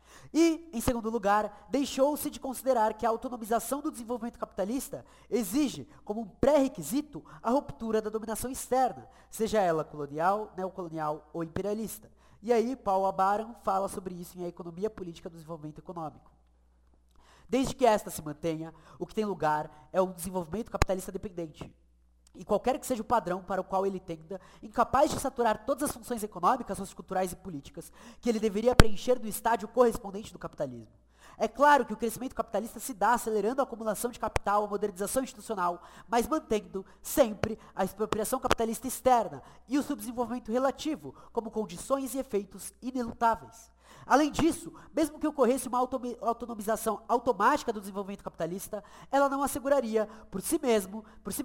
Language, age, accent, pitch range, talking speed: Portuguese, 20-39, Brazilian, 185-250 Hz, 155 wpm